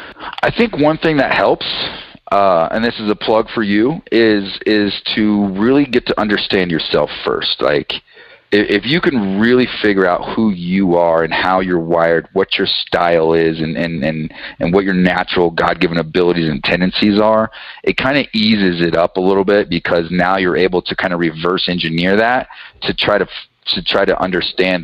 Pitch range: 85-110 Hz